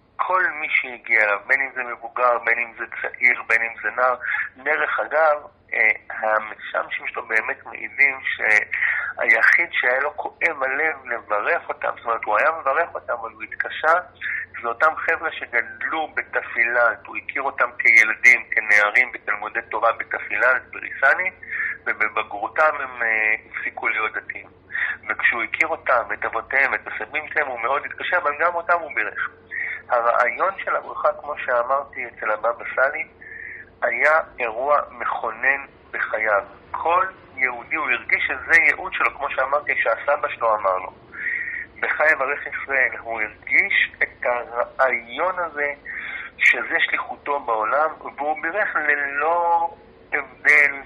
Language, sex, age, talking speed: Hebrew, male, 50-69, 130 wpm